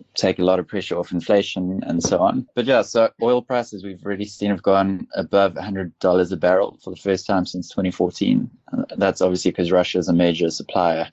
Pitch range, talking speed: 85-95 Hz, 205 wpm